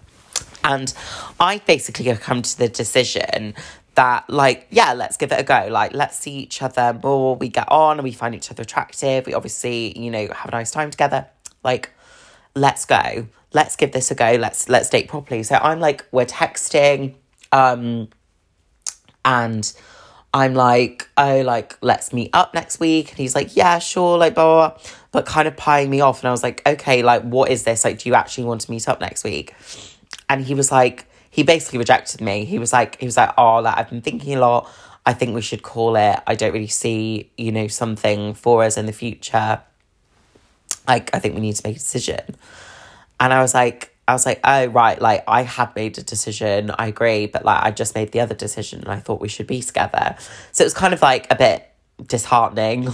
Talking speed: 215 wpm